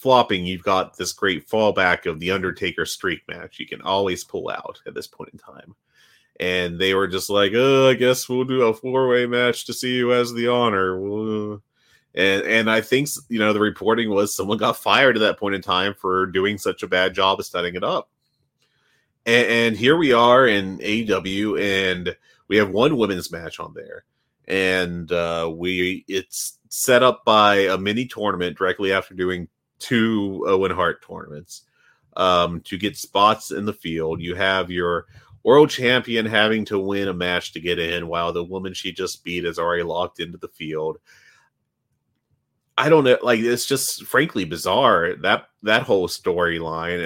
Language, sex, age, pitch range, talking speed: English, male, 30-49, 90-120 Hz, 180 wpm